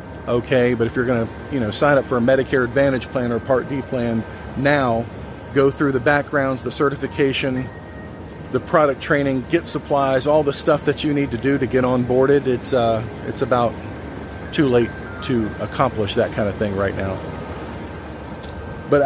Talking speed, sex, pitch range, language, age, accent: 175 wpm, male, 105-140 Hz, English, 40-59, American